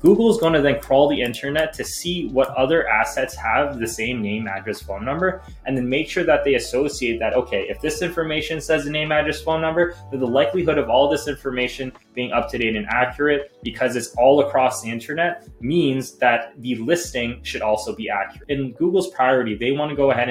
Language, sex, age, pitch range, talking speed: English, male, 20-39, 115-145 Hz, 205 wpm